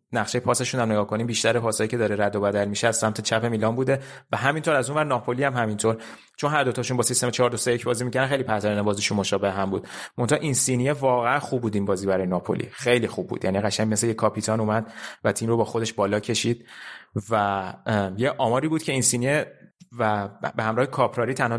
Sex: male